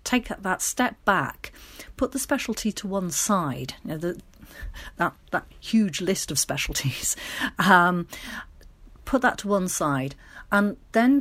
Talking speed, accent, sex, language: 145 wpm, British, female, English